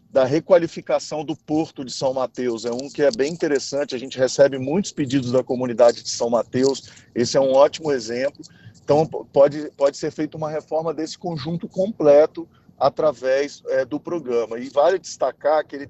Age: 40-59